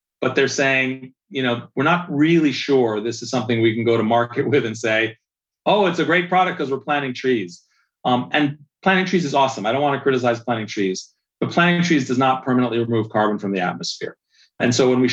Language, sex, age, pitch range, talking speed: English, male, 40-59, 115-135 Hz, 225 wpm